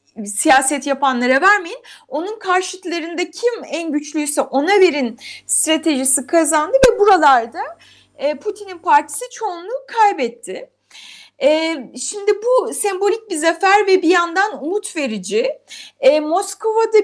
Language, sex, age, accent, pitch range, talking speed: Turkish, female, 30-49, native, 290-375 Hz, 100 wpm